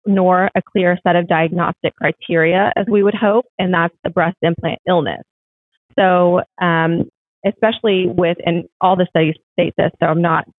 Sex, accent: female, American